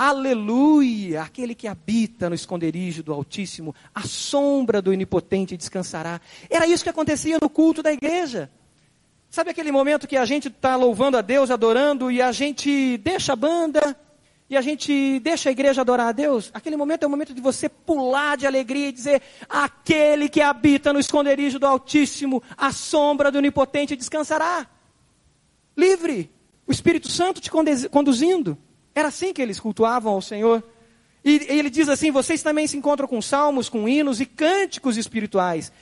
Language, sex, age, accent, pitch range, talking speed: Portuguese, male, 40-59, Brazilian, 220-290 Hz, 165 wpm